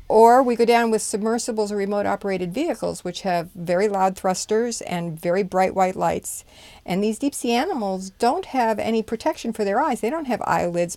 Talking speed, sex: 195 wpm, female